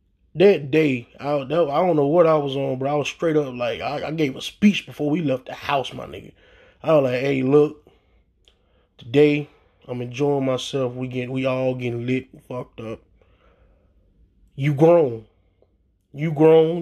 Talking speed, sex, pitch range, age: 180 wpm, male, 130-170 Hz, 20-39